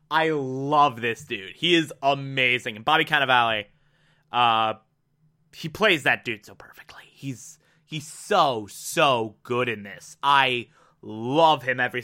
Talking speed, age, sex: 140 wpm, 20-39, male